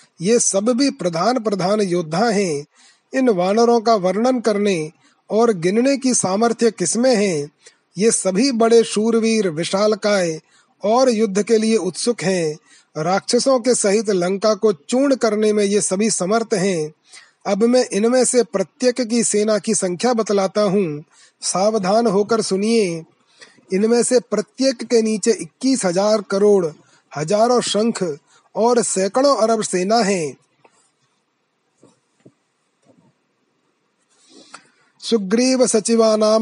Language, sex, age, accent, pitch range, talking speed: Hindi, male, 30-49, native, 190-225 Hz, 110 wpm